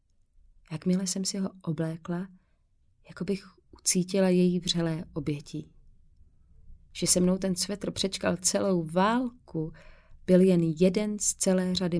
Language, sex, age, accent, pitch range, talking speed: Czech, female, 30-49, native, 160-190 Hz, 125 wpm